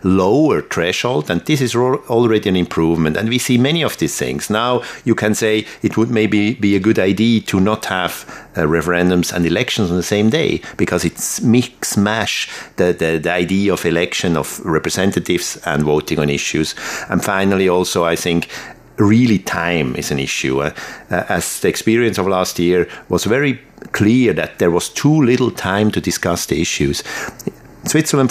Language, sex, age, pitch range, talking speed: German, male, 50-69, 80-105 Hz, 180 wpm